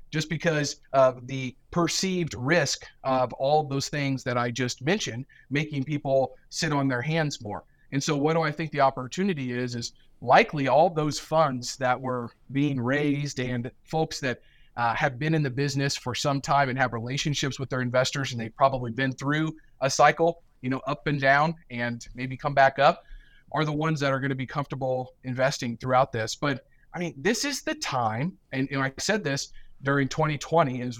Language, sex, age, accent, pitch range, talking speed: English, male, 30-49, American, 125-155 Hz, 195 wpm